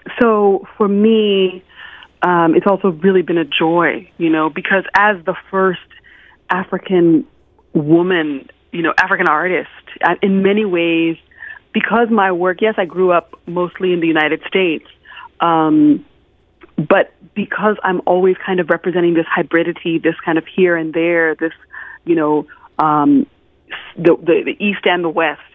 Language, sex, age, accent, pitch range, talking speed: English, female, 30-49, American, 160-195 Hz, 150 wpm